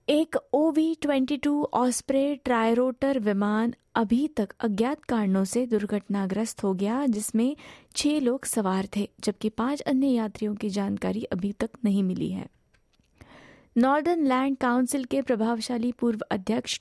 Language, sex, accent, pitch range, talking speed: Hindi, female, native, 210-265 Hz, 130 wpm